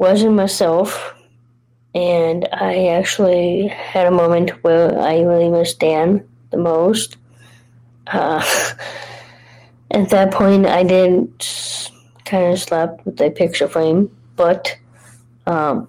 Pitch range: 120-190 Hz